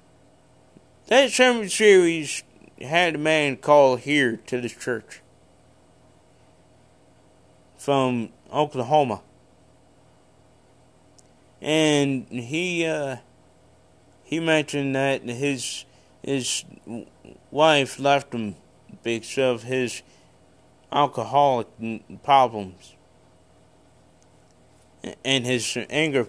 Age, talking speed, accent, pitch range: 20-39, 75 wpm, American, 110-165 Hz